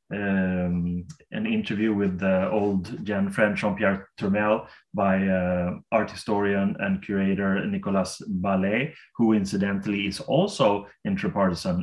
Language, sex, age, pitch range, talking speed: English, male, 30-49, 100-130 Hz, 110 wpm